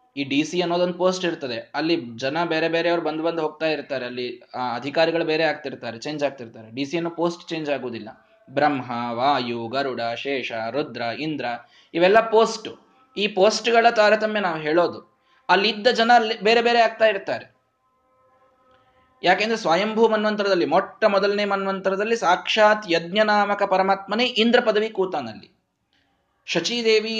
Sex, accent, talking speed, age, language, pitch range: male, native, 130 wpm, 20-39, Kannada, 145-220 Hz